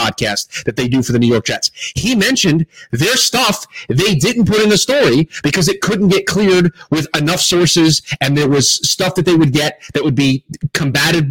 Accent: American